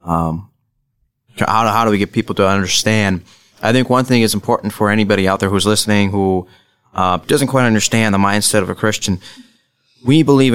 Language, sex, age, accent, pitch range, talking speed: English, male, 30-49, American, 105-120 Hz, 190 wpm